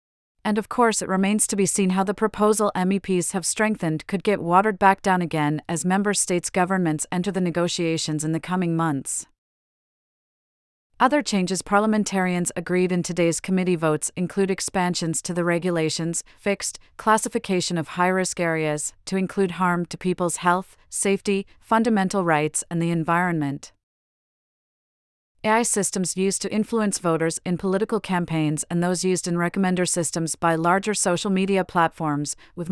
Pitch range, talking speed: 165-195 Hz, 150 wpm